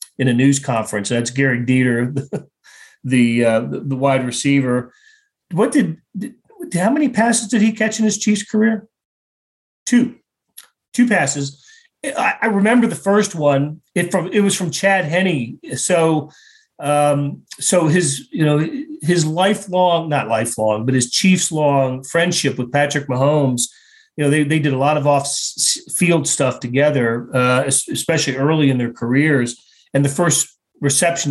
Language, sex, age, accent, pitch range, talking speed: English, male, 40-59, American, 130-180 Hz, 155 wpm